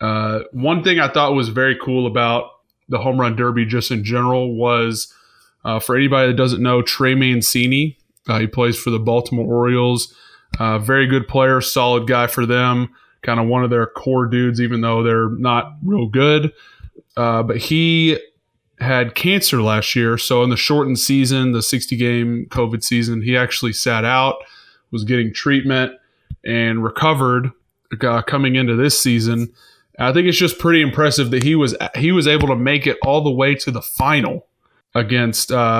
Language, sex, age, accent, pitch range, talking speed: English, male, 20-39, American, 115-135 Hz, 180 wpm